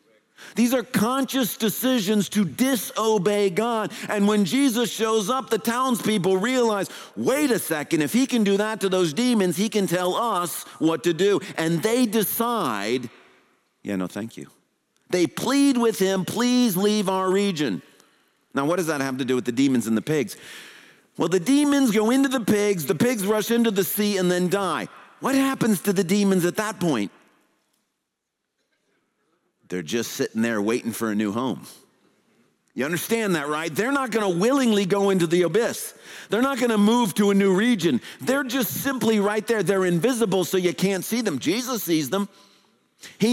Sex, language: male, English